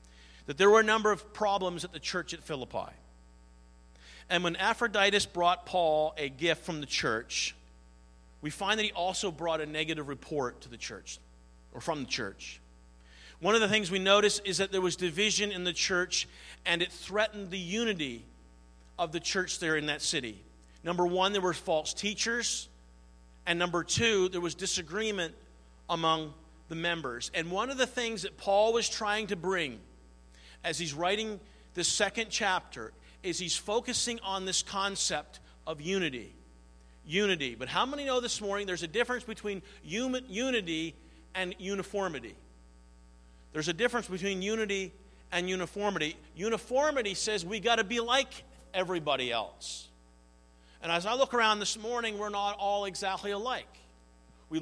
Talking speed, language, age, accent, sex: 160 wpm, English, 40-59, American, male